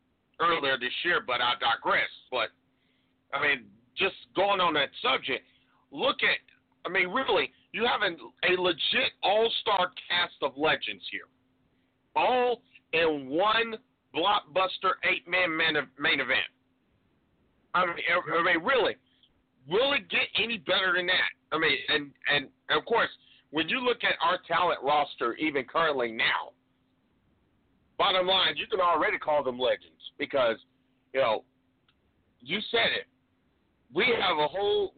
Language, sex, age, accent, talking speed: English, male, 50-69, American, 140 wpm